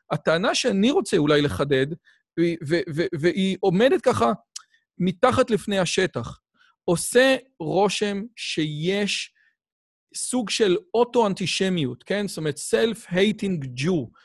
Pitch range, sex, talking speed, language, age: 160-210 Hz, male, 105 wpm, Hebrew, 40-59